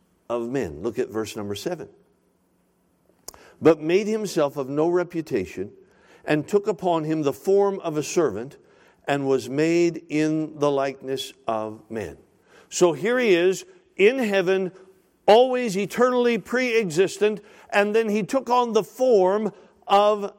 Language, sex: English, male